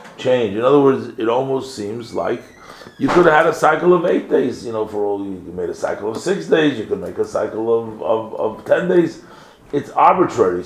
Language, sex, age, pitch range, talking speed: English, male, 40-59, 110-135 Hz, 225 wpm